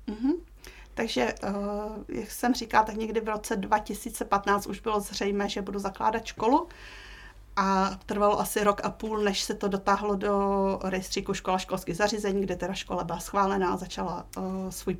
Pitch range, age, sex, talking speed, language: 200-220 Hz, 30-49, female, 155 wpm, Czech